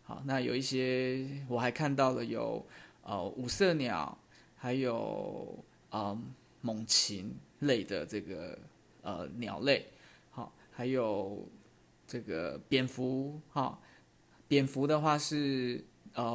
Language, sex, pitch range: Chinese, male, 120-135 Hz